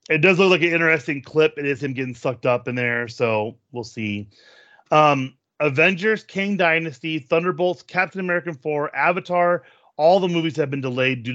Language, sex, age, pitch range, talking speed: English, male, 30-49, 125-150 Hz, 180 wpm